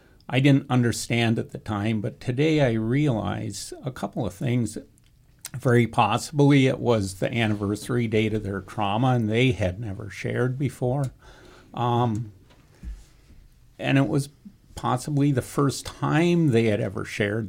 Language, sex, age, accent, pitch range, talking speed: English, male, 50-69, American, 105-130 Hz, 145 wpm